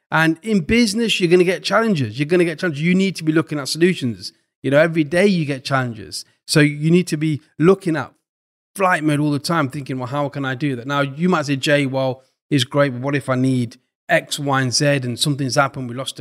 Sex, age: male, 30-49